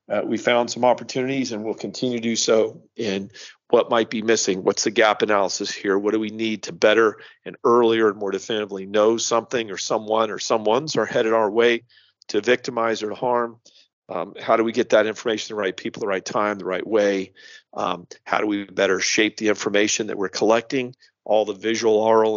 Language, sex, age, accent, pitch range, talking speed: English, male, 50-69, American, 110-130 Hz, 215 wpm